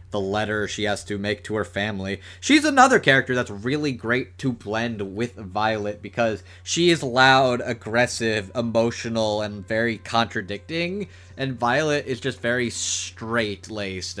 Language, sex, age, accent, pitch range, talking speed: English, male, 30-49, American, 100-140 Hz, 145 wpm